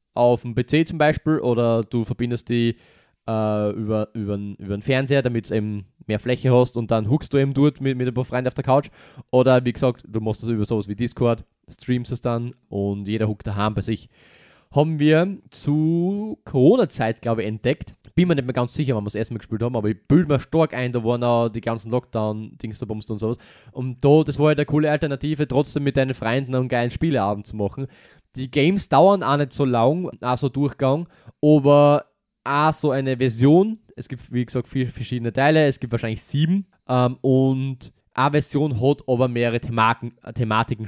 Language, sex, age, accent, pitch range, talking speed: German, male, 20-39, German, 115-150 Hz, 200 wpm